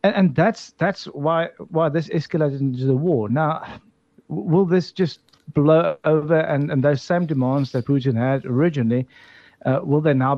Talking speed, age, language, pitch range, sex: 170 wpm, 50-69, English, 130-170 Hz, male